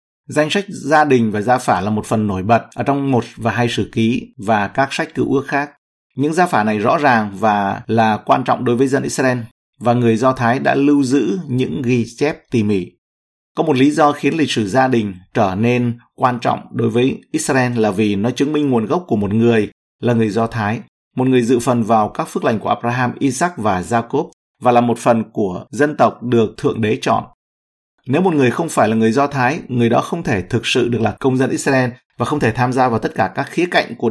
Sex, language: male, Vietnamese